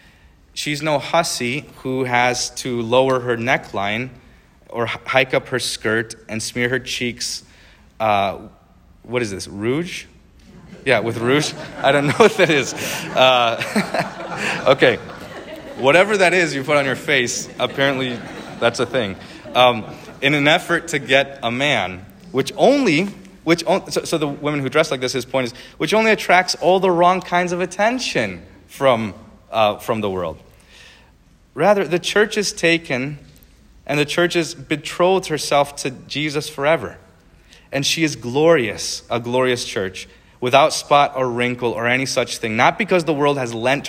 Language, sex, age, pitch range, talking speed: English, male, 30-49, 110-150 Hz, 160 wpm